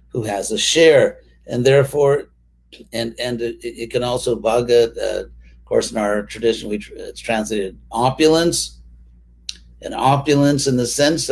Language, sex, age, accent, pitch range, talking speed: English, male, 50-69, American, 100-135 Hz, 140 wpm